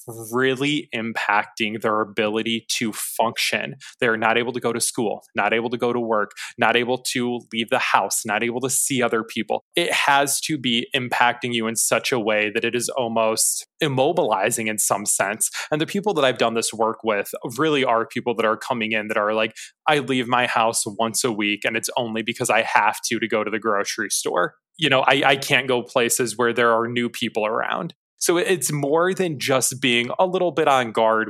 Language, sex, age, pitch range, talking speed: English, male, 20-39, 115-130 Hz, 215 wpm